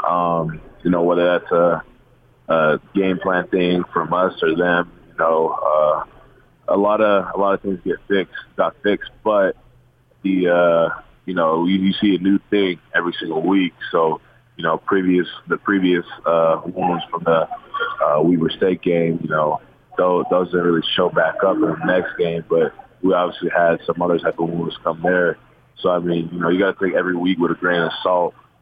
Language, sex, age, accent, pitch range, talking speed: English, male, 20-39, American, 80-95 Hz, 205 wpm